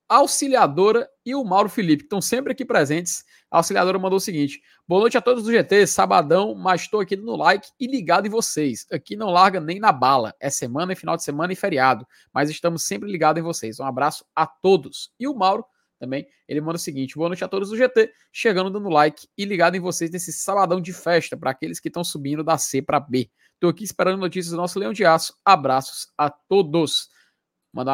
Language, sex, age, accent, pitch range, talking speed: Portuguese, male, 20-39, Brazilian, 145-200 Hz, 225 wpm